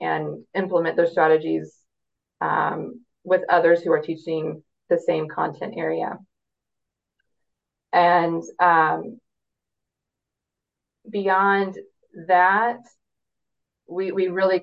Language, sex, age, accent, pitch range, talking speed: English, female, 20-39, American, 170-205 Hz, 85 wpm